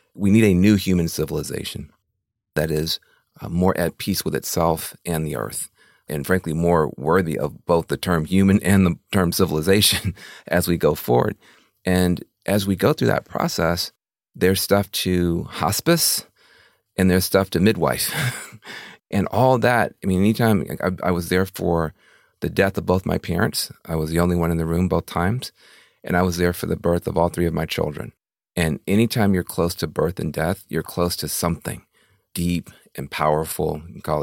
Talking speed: 190 wpm